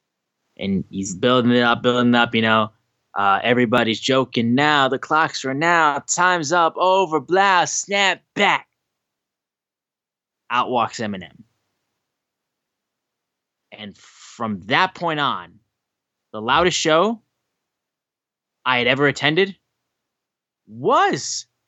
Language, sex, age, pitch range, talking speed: English, male, 10-29, 115-155 Hz, 110 wpm